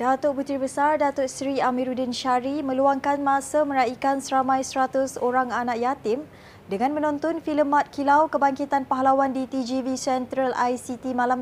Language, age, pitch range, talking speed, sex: Malay, 20-39, 245-285 Hz, 140 wpm, female